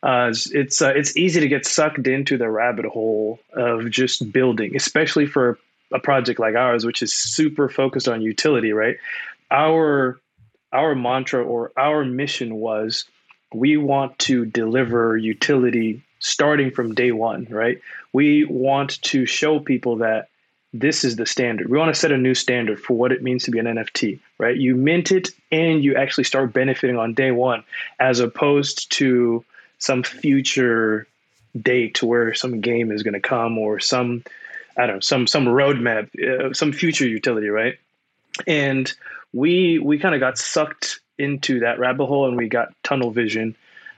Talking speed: 170 wpm